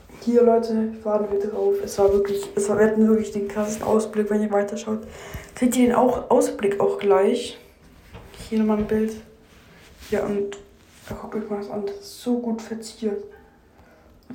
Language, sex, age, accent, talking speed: German, female, 20-39, German, 180 wpm